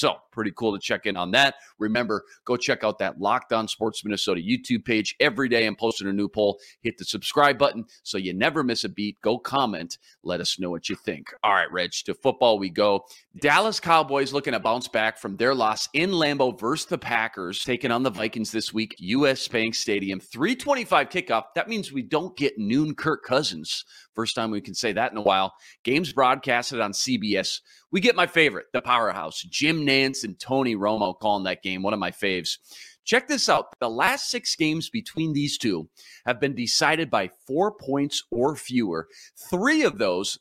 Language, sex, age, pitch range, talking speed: English, male, 40-59, 110-150 Hz, 200 wpm